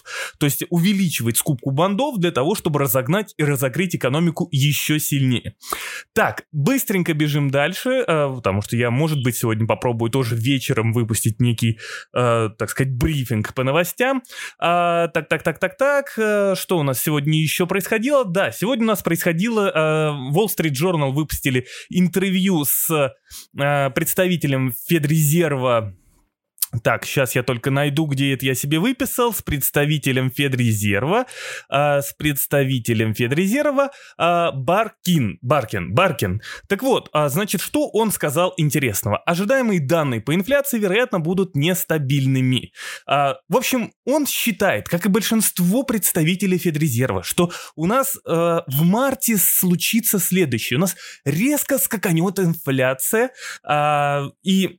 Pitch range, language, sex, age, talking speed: 140-195 Hz, Russian, male, 20-39, 120 wpm